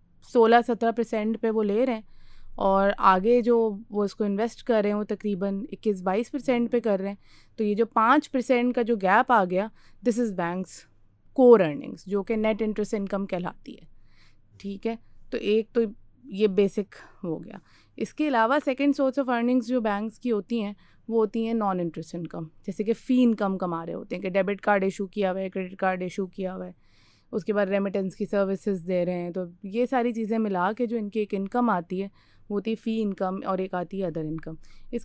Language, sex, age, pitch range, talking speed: Urdu, female, 20-39, 190-235 Hz, 215 wpm